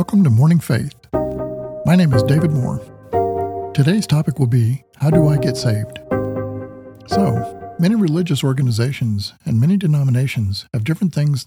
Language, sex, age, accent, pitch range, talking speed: English, male, 50-69, American, 110-150 Hz, 145 wpm